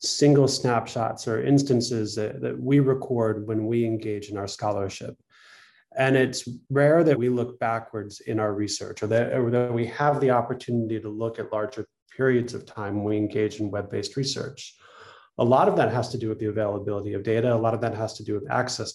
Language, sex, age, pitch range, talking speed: English, male, 20-39, 110-130 Hz, 205 wpm